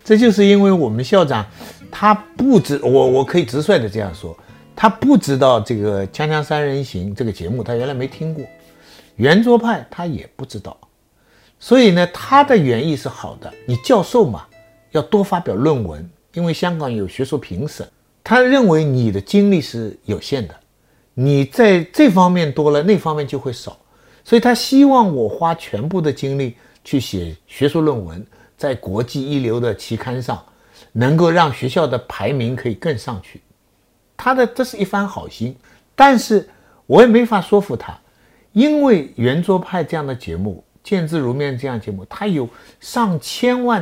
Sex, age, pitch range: male, 50-69, 120-195 Hz